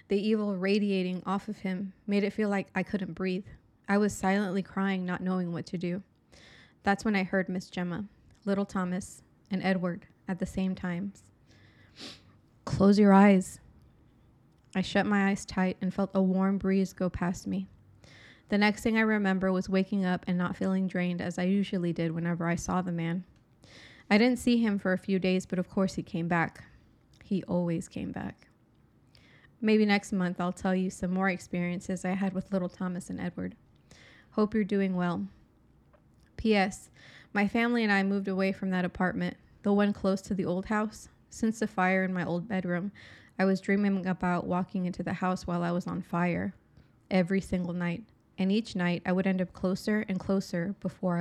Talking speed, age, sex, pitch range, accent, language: 190 wpm, 20-39, female, 180-200 Hz, American, English